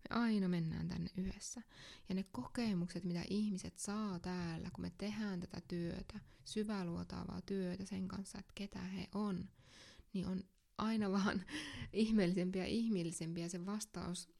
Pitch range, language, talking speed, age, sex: 180-210 Hz, English, 145 wpm, 20-39, female